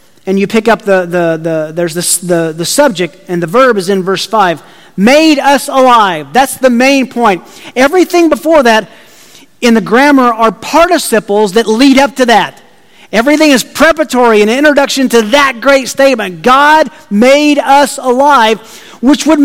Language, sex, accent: English, male, American